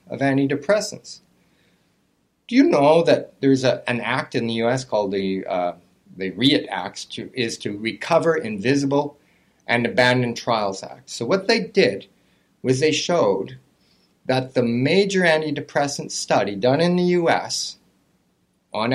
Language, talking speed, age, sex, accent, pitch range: English, 135 wpm, 40-59, male, American, 120-160 Hz